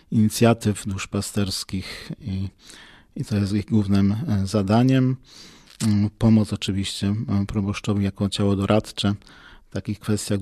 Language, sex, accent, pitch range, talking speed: Polish, male, native, 100-105 Hz, 105 wpm